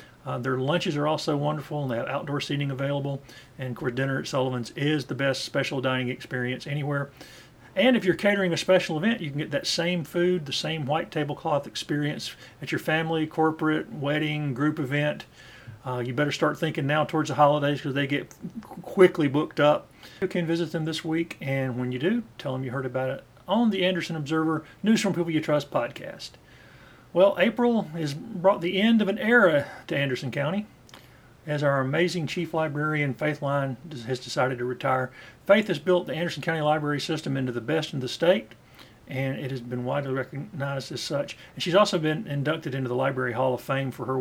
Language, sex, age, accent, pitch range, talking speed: English, male, 40-59, American, 130-170 Hz, 200 wpm